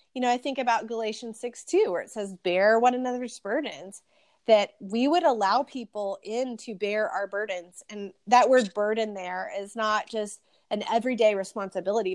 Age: 30-49